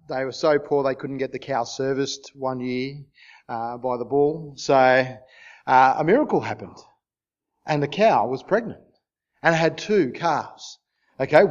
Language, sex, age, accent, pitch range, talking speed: English, male, 40-59, Australian, 130-165 Hz, 160 wpm